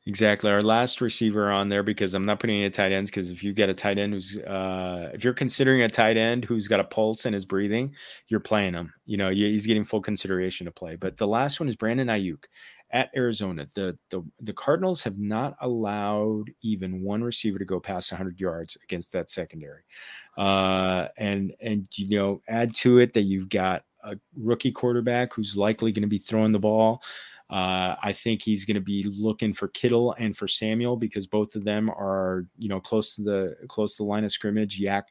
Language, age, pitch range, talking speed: English, 30-49, 95-115 Hz, 215 wpm